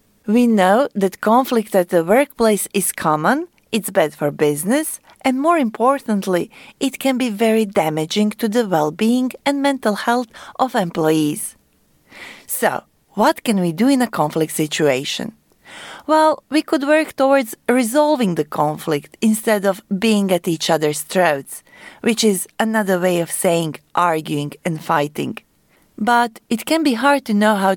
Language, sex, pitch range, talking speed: Amharic, female, 175-250 Hz, 150 wpm